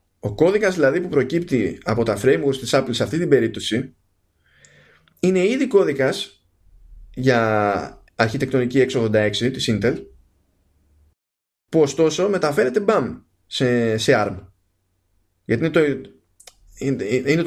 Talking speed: 115 wpm